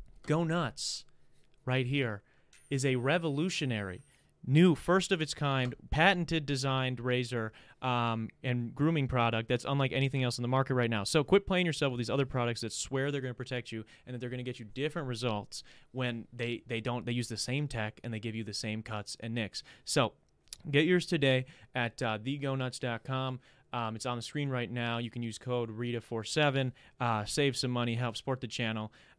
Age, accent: 30-49, American